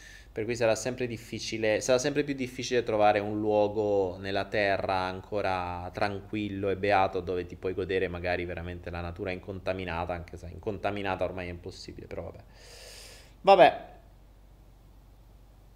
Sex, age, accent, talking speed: male, 20-39, native, 135 wpm